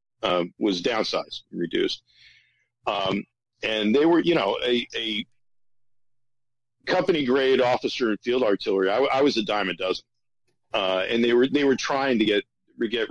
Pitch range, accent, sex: 110-130 Hz, American, male